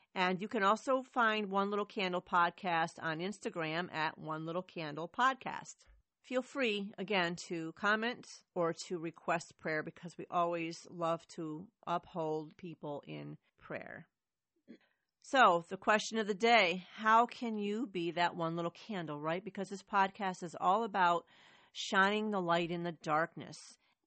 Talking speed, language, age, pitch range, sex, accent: 150 wpm, English, 40-59, 165-200 Hz, female, American